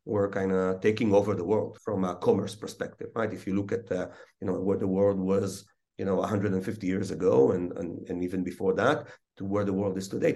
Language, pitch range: English, 95-110 Hz